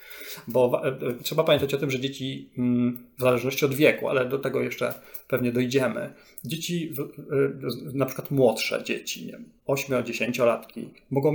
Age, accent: 30-49, native